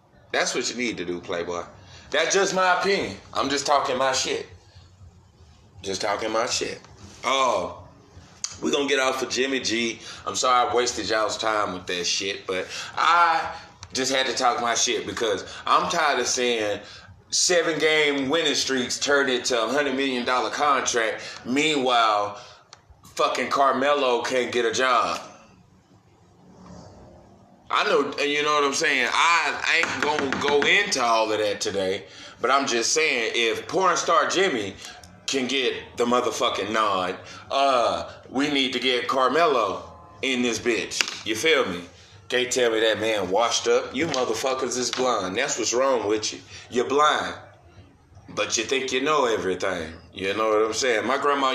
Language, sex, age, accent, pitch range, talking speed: English, male, 20-39, American, 100-145 Hz, 165 wpm